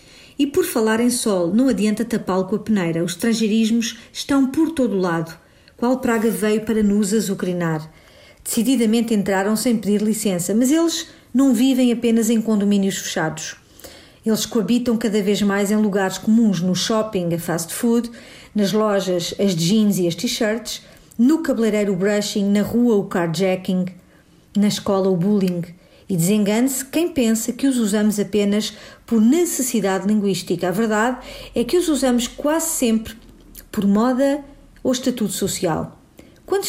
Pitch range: 200-245 Hz